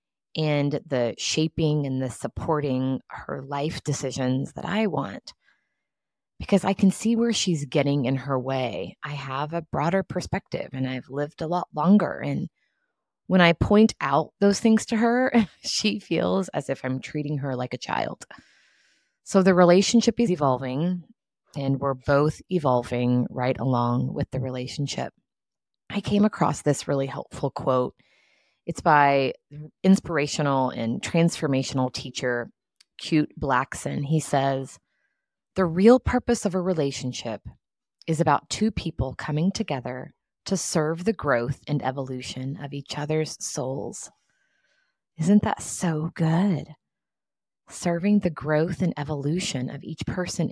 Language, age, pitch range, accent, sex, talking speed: English, 20-39, 135-190 Hz, American, female, 140 wpm